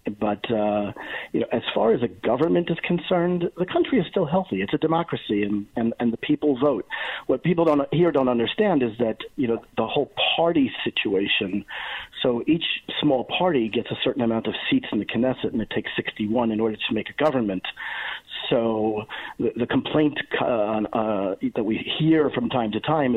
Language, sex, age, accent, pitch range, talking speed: English, male, 40-59, American, 110-145 Hz, 205 wpm